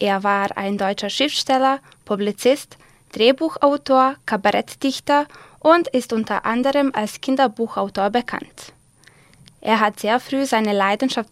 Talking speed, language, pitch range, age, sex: 110 wpm, German, 210-265 Hz, 20-39, female